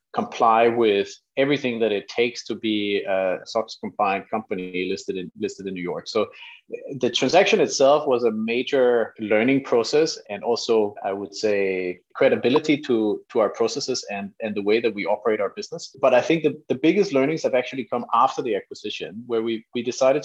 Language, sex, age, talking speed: English, male, 30-49, 185 wpm